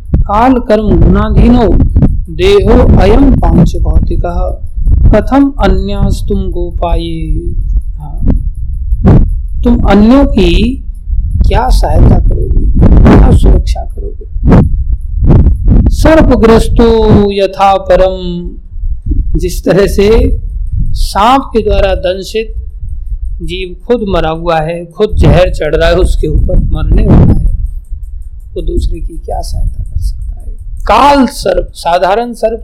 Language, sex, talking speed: Hindi, male, 110 wpm